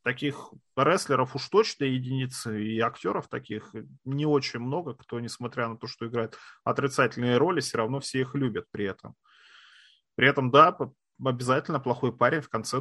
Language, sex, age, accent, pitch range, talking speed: Russian, male, 30-49, native, 115-145 Hz, 160 wpm